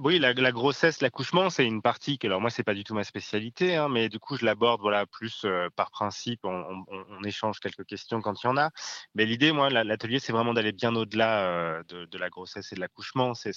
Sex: male